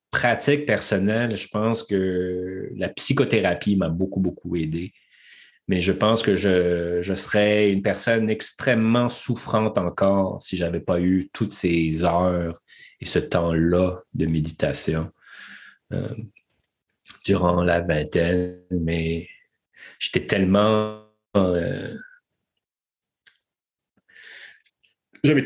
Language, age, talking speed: French, 30-49, 105 wpm